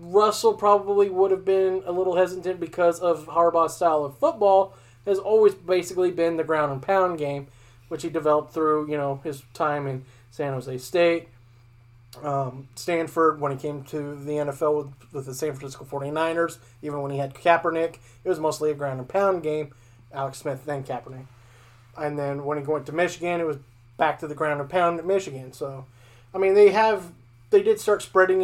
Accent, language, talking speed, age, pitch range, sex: American, English, 180 wpm, 30-49, 135-170 Hz, male